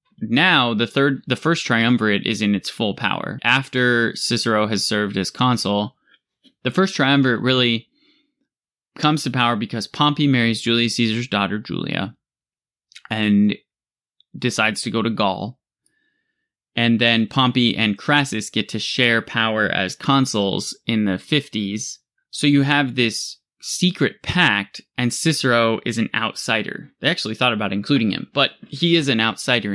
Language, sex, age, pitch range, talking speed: English, male, 20-39, 110-145 Hz, 145 wpm